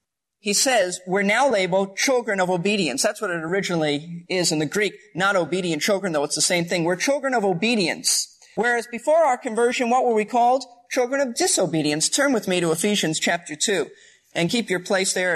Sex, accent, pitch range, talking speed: male, American, 180-245 Hz, 200 wpm